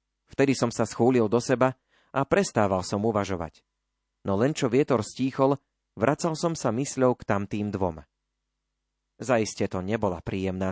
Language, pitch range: Slovak, 100-135 Hz